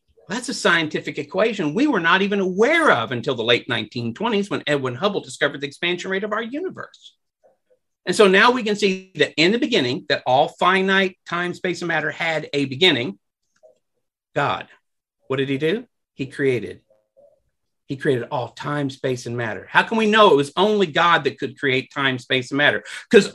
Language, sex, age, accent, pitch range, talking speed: English, male, 50-69, American, 135-200 Hz, 190 wpm